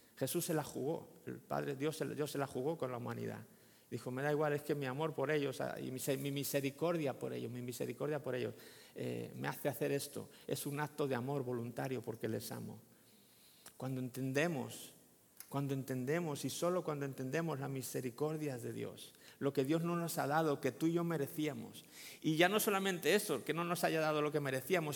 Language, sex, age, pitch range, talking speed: Spanish, male, 50-69, 140-175 Hz, 205 wpm